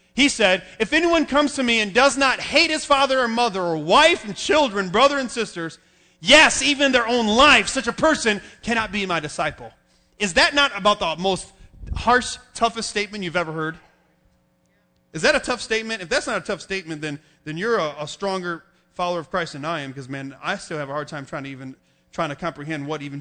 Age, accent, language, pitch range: 30-49, American, English, 170-260 Hz